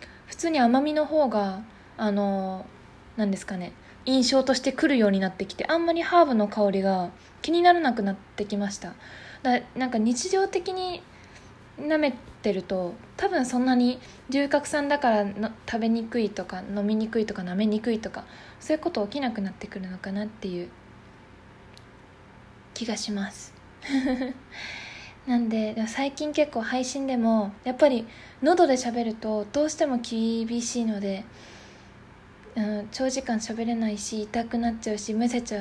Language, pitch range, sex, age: Japanese, 200-250 Hz, female, 20-39